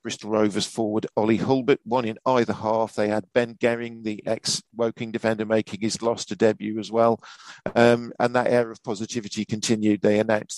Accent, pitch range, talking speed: British, 105-115 Hz, 180 wpm